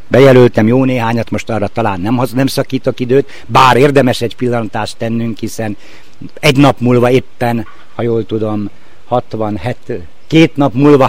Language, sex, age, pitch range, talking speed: Hungarian, male, 60-79, 115-155 Hz, 140 wpm